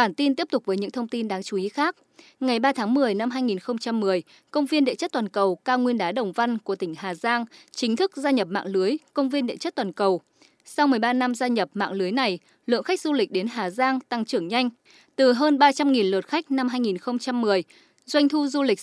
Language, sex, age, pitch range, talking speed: Vietnamese, female, 20-39, 210-285 Hz, 235 wpm